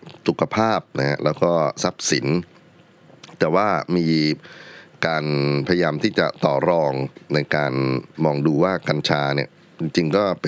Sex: male